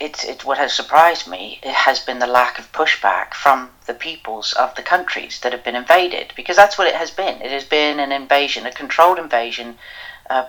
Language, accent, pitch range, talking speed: English, British, 130-160 Hz, 215 wpm